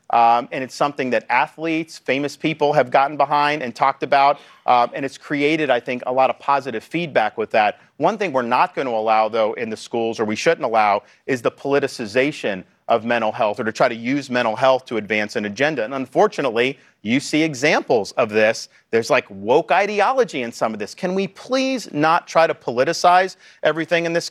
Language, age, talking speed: English, 40-59, 205 wpm